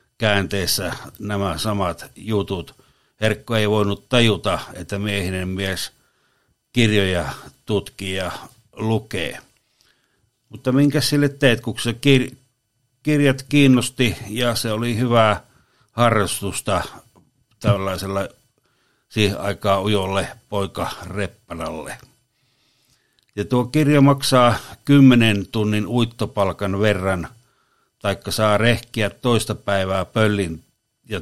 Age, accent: 60-79, native